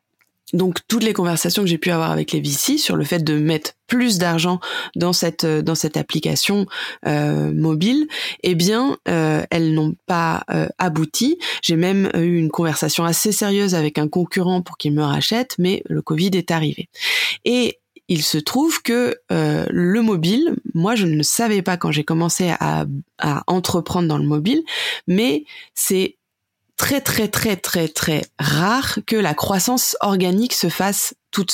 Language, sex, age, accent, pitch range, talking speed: French, female, 20-39, French, 160-210 Hz, 165 wpm